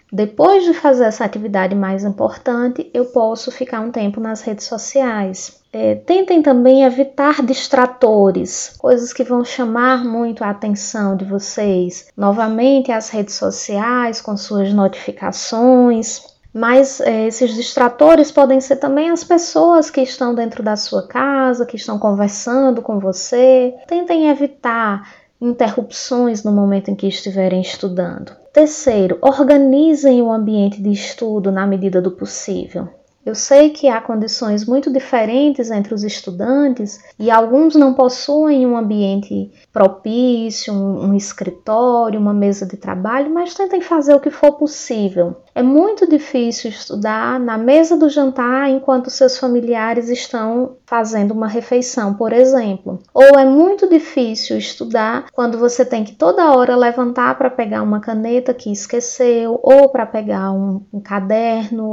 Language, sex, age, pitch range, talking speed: Portuguese, female, 20-39, 210-265 Hz, 140 wpm